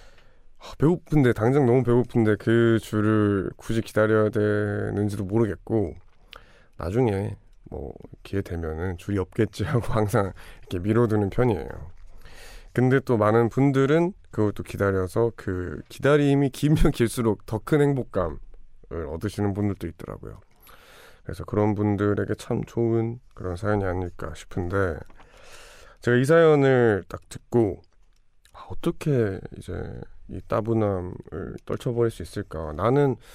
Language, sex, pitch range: Korean, male, 90-115 Hz